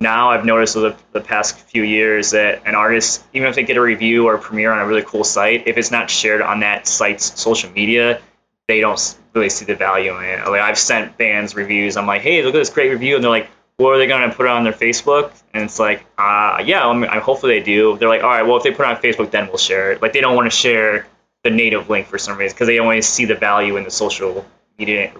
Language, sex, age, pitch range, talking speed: English, male, 20-39, 100-120 Hz, 280 wpm